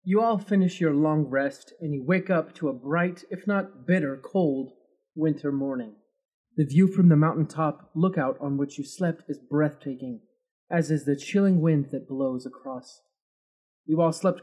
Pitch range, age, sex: 145-180 Hz, 30-49, male